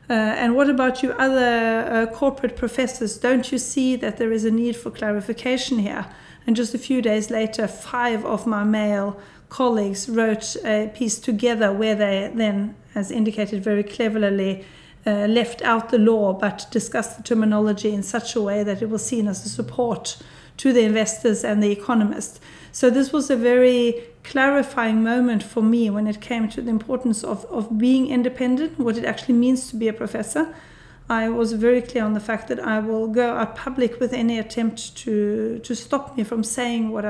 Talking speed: 190 wpm